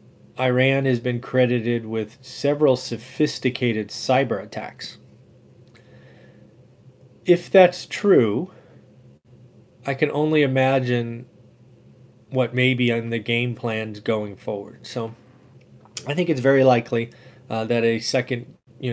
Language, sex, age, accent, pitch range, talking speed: English, male, 30-49, American, 110-130 Hz, 115 wpm